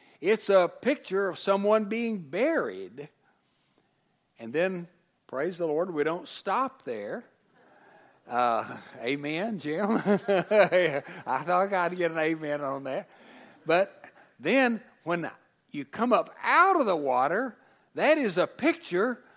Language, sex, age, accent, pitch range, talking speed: English, male, 60-79, American, 160-245 Hz, 125 wpm